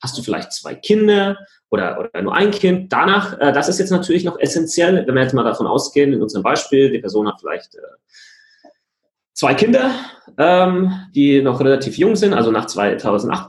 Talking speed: 180 wpm